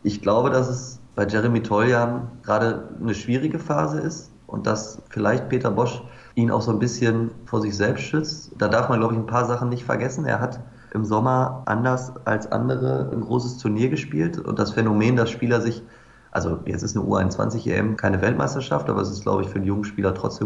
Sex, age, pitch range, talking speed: male, 30-49, 105-125 Hz, 205 wpm